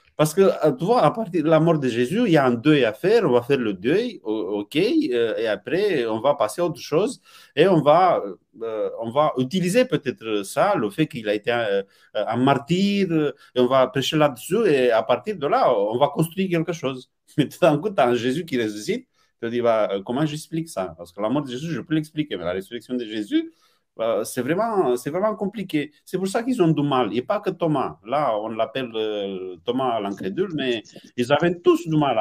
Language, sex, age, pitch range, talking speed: French, male, 30-49, 120-185 Hz, 230 wpm